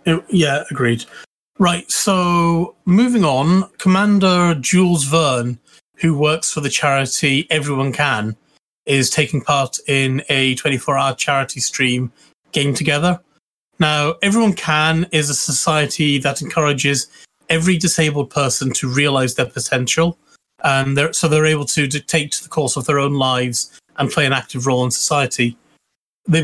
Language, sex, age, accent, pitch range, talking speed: English, male, 30-49, British, 135-165 Hz, 145 wpm